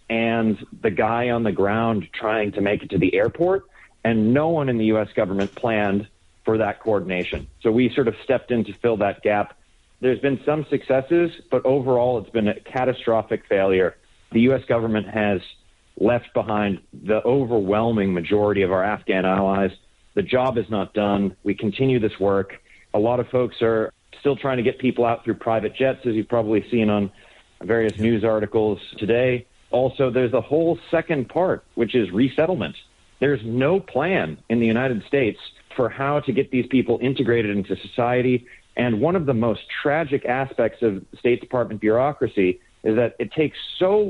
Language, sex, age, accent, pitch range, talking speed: English, male, 40-59, American, 105-130 Hz, 180 wpm